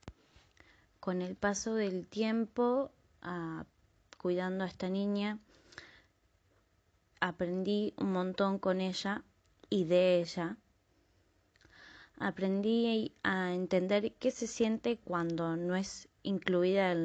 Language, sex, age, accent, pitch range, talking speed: Spanish, female, 20-39, Argentinian, 165-195 Hz, 100 wpm